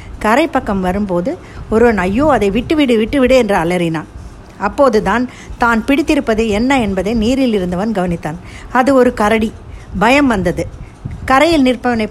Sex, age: female, 50-69